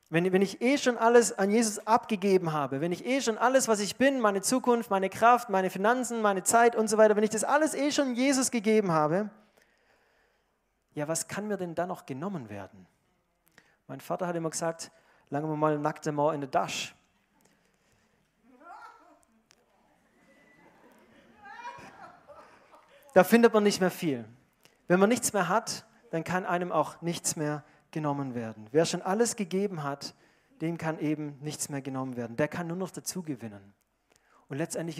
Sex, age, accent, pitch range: male, 40-59, German, 145-205 Hz